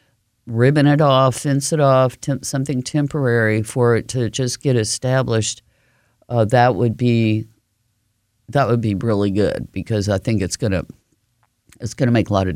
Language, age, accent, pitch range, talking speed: English, 50-69, American, 105-130 Hz, 165 wpm